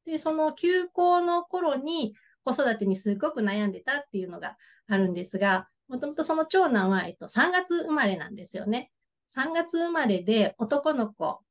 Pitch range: 195-240 Hz